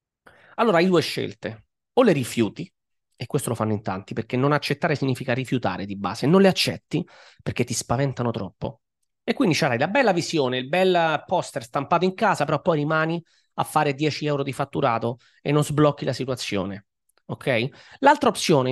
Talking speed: 180 wpm